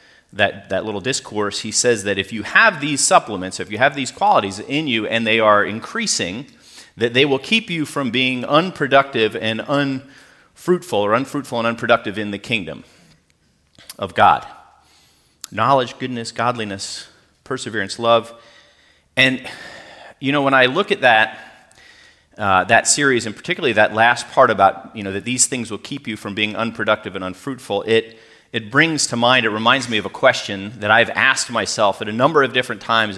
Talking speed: 175 wpm